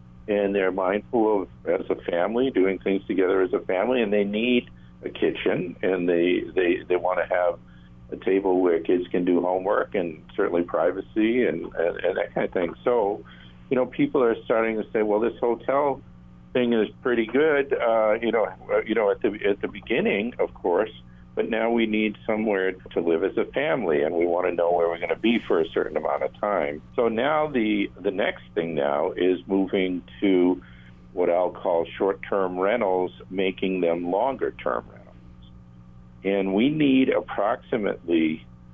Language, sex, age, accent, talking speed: English, male, 50-69, American, 185 wpm